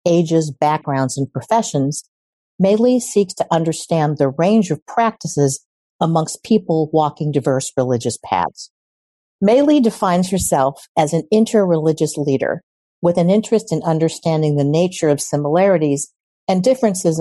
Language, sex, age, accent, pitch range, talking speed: English, female, 50-69, American, 145-195 Hz, 125 wpm